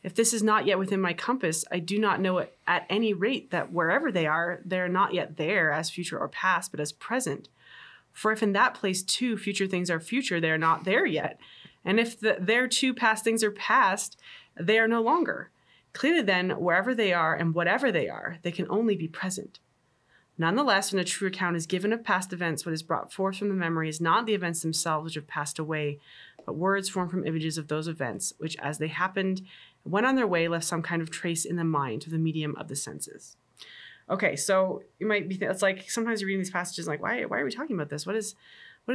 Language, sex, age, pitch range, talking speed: English, female, 20-39, 165-215 Hz, 235 wpm